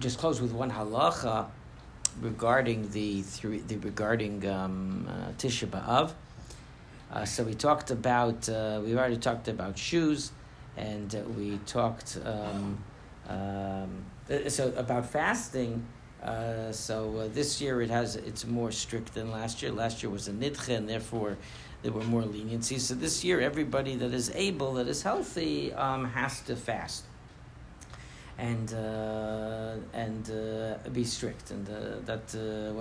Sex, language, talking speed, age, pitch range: male, English, 150 wpm, 60-79, 110-135 Hz